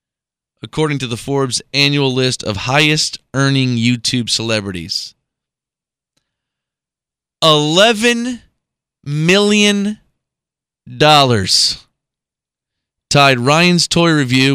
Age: 30-49